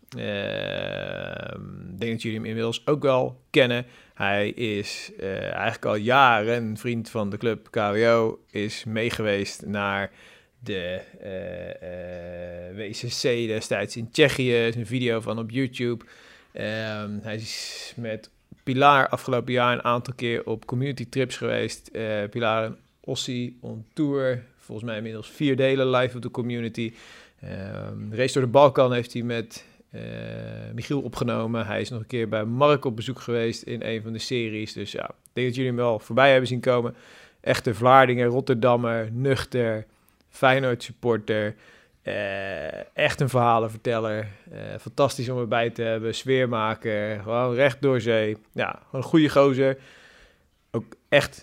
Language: Dutch